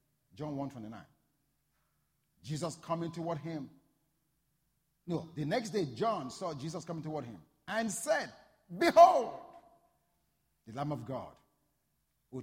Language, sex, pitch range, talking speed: English, male, 120-165 Hz, 120 wpm